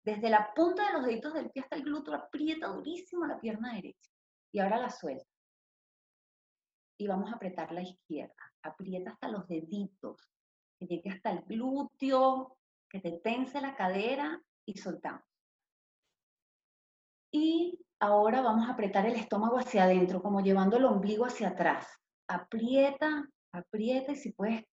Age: 30-49